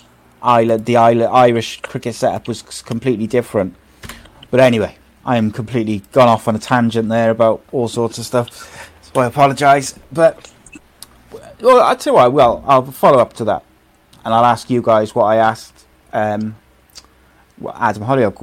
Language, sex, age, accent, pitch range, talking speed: English, male, 30-49, British, 110-130 Hz, 170 wpm